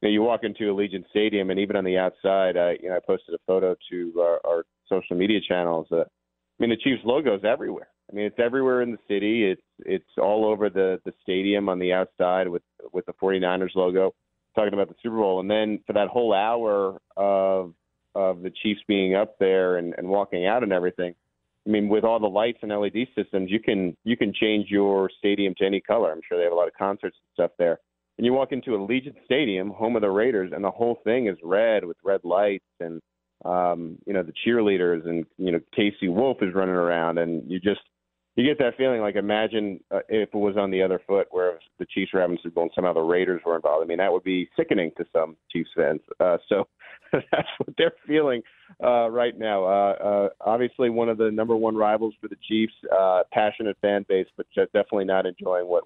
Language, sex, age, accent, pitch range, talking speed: English, male, 40-59, American, 90-110 Hz, 225 wpm